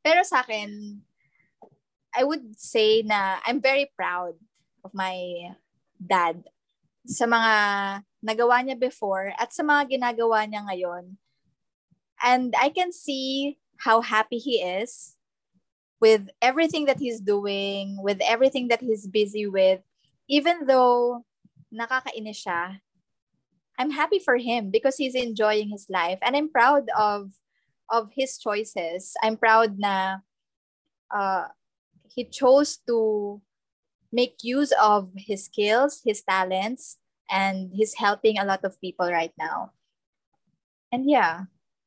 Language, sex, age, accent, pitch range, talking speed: Filipino, female, 20-39, native, 195-255 Hz, 125 wpm